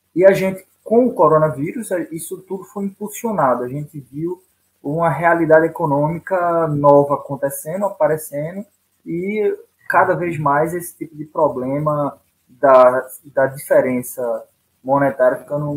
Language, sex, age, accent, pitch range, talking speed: Portuguese, male, 20-39, Brazilian, 145-190 Hz, 120 wpm